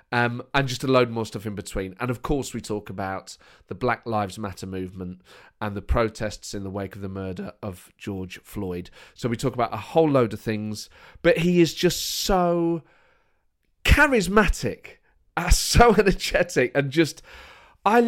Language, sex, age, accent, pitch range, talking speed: English, male, 40-59, British, 105-160 Hz, 175 wpm